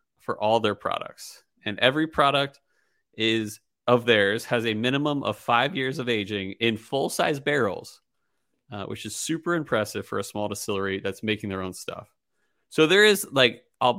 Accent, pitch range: American, 105-135 Hz